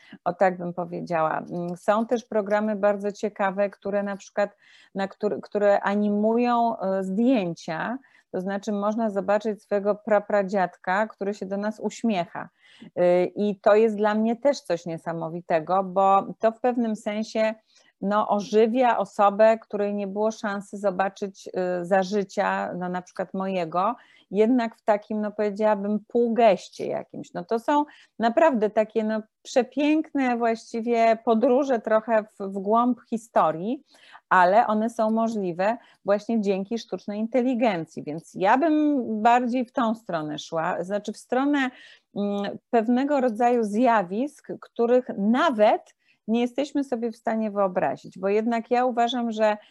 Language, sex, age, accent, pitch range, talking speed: English, female, 30-49, Polish, 200-235 Hz, 130 wpm